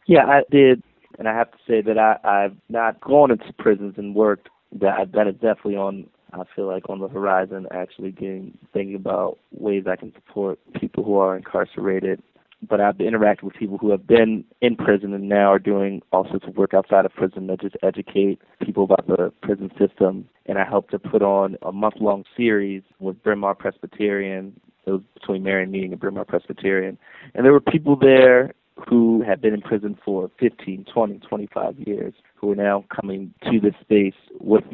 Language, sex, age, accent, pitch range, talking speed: English, male, 20-39, American, 95-110 Hz, 195 wpm